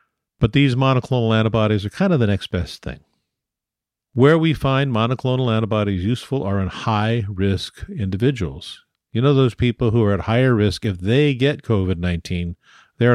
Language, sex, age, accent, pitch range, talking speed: English, male, 50-69, American, 95-125 Hz, 160 wpm